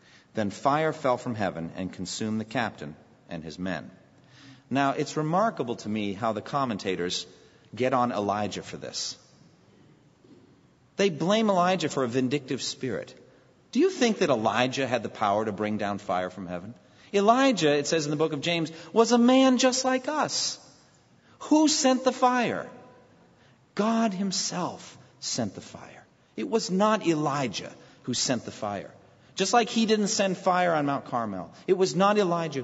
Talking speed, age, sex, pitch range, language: 165 wpm, 40-59, male, 105-170 Hz, English